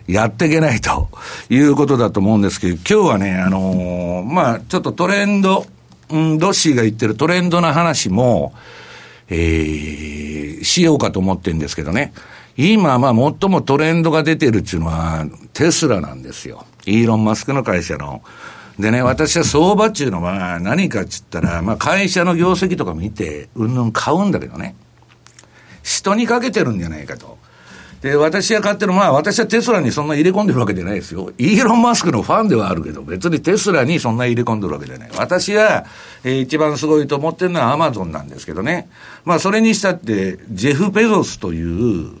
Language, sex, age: Japanese, male, 60-79